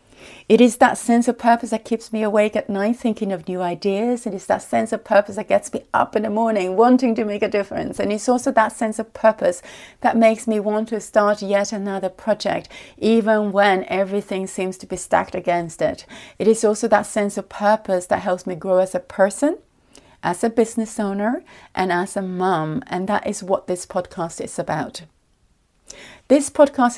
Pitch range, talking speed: 190-235 Hz, 200 wpm